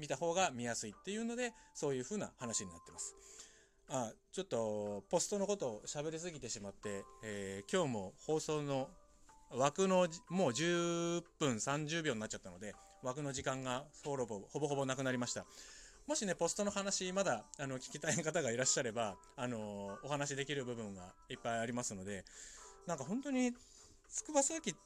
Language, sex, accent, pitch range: Japanese, male, native, 115-185 Hz